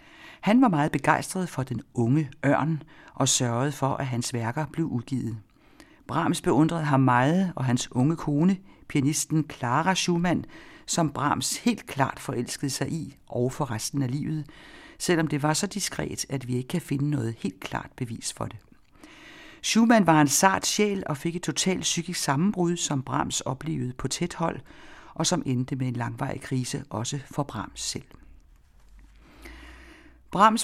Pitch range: 135-180 Hz